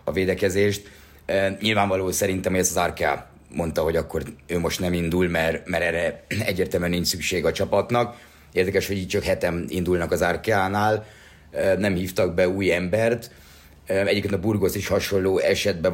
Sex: male